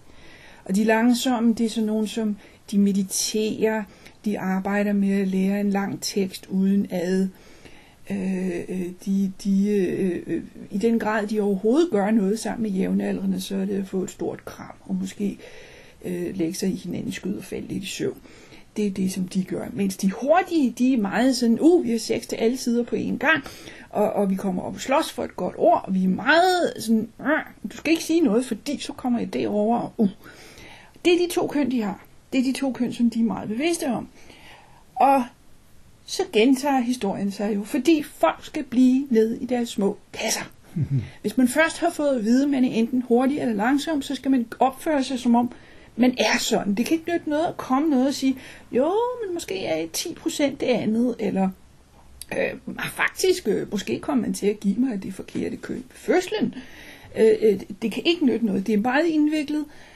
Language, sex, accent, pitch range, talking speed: Danish, female, native, 200-275 Hz, 210 wpm